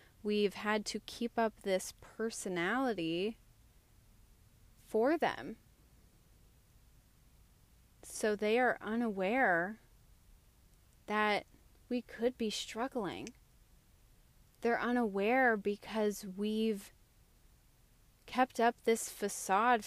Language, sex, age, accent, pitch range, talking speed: English, female, 20-39, American, 185-230 Hz, 80 wpm